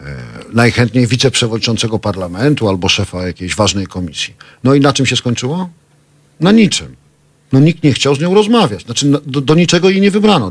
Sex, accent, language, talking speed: male, native, Polish, 170 wpm